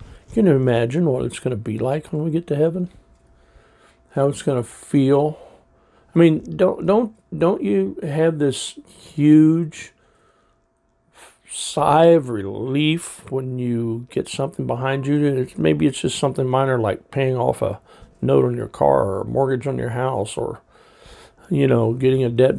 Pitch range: 120-150 Hz